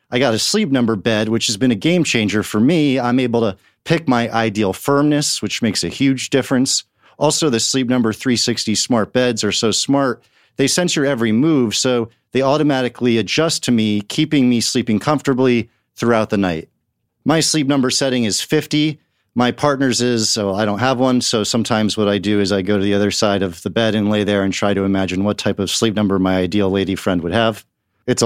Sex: male